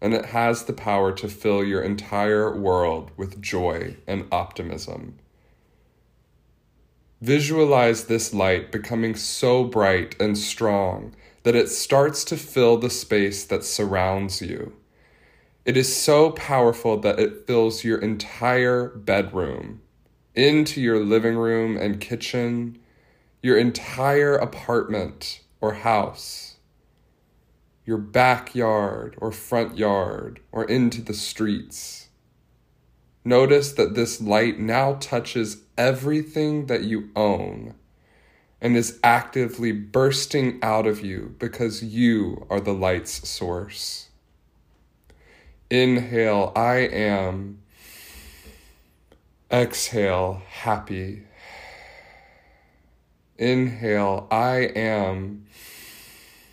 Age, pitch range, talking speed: 20-39, 100-120 Hz, 100 wpm